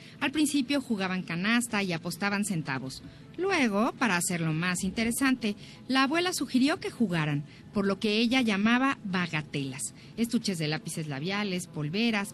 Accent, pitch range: Mexican, 170-250 Hz